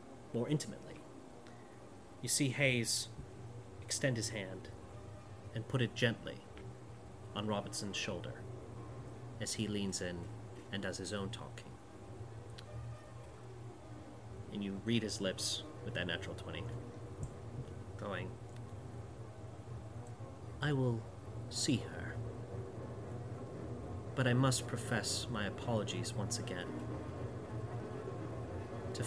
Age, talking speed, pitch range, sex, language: 30-49, 95 wpm, 100-120 Hz, male, English